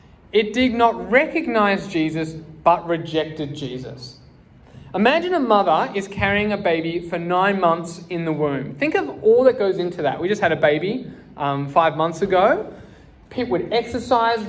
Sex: male